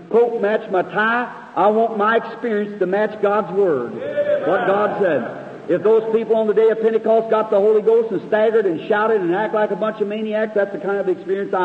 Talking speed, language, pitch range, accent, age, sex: 220 wpm, English, 190-220 Hz, American, 50-69, male